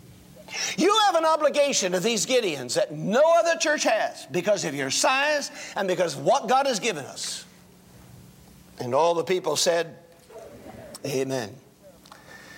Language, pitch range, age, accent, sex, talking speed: English, 165-250 Hz, 50-69, American, male, 145 wpm